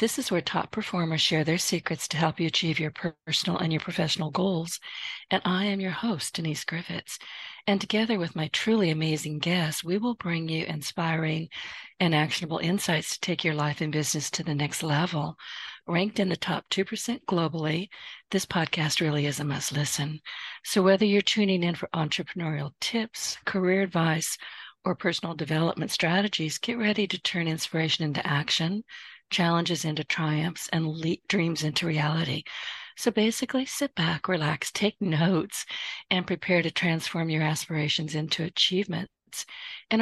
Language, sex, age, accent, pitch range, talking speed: English, female, 50-69, American, 155-190 Hz, 160 wpm